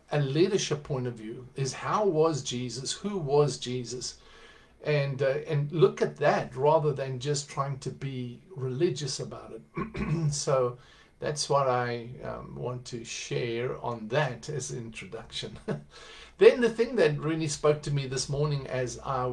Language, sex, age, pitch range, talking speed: English, male, 50-69, 120-150 Hz, 160 wpm